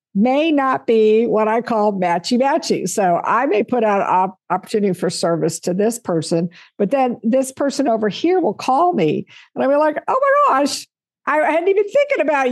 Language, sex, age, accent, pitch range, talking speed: English, female, 50-69, American, 180-250 Hz, 195 wpm